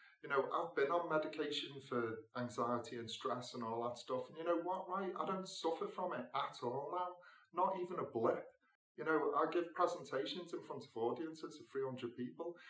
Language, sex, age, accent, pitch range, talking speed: English, male, 30-49, British, 165-200 Hz, 205 wpm